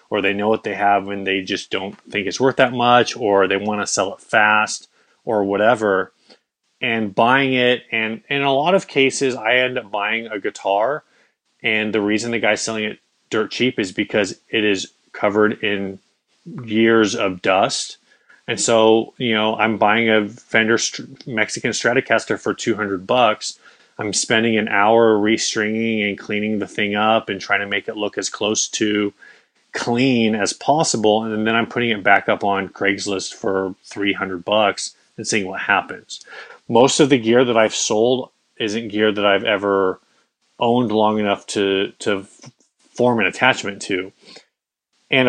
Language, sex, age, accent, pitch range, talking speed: English, male, 20-39, American, 105-115 Hz, 175 wpm